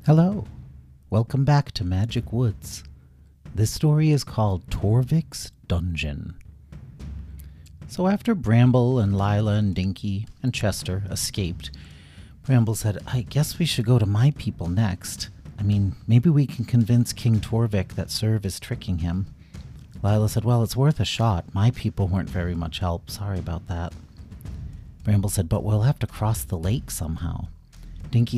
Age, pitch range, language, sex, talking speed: 40-59, 90-140 Hz, English, male, 155 wpm